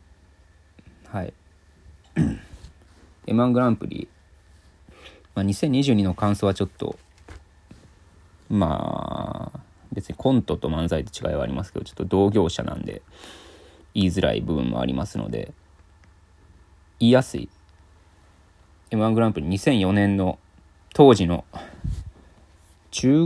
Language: Japanese